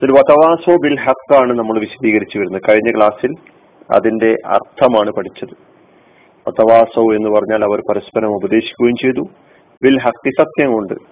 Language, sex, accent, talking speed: Malayalam, male, native, 90 wpm